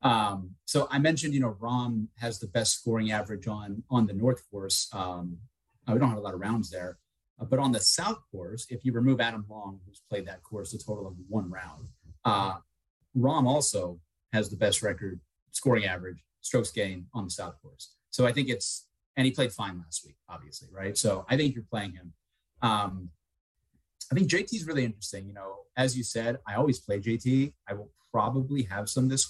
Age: 30-49